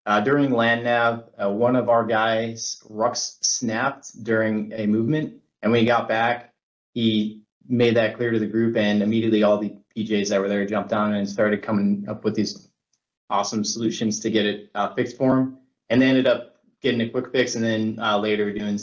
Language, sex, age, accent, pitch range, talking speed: English, male, 30-49, American, 105-125 Hz, 205 wpm